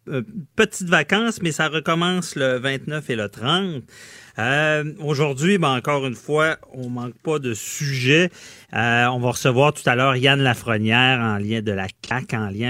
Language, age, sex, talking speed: French, 40-59, male, 175 wpm